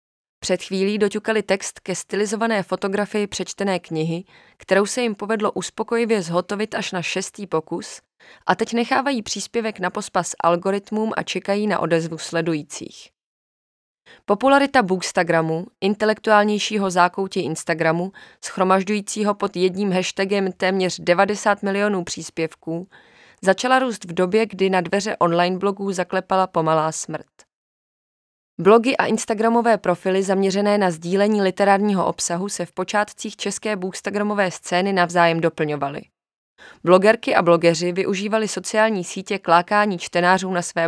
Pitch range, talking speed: 175-210 Hz, 120 wpm